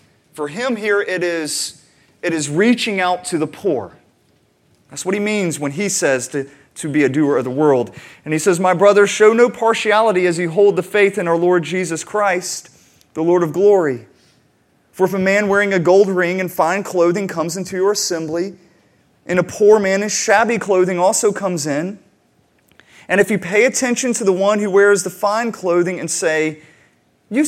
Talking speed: 195 wpm